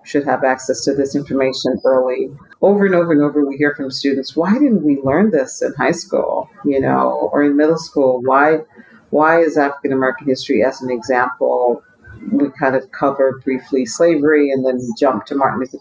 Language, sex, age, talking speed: English, female, 50-69, 195 wpm